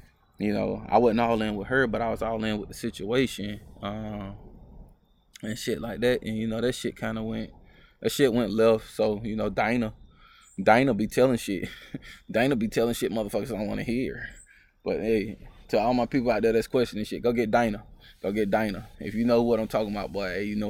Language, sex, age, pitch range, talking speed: English, male, 20-39, 105-120 Hz, 225 wpm